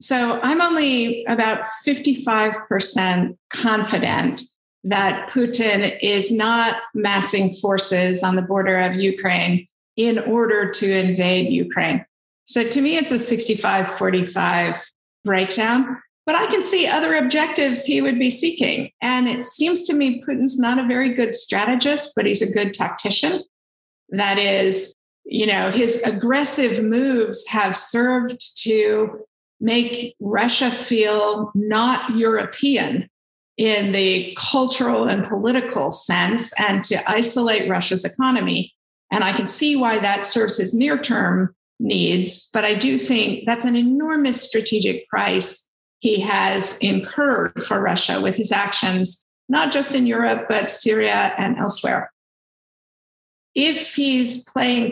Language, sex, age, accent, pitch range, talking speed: English, female, 50-69, American, 205-255 Hz, 130 wpm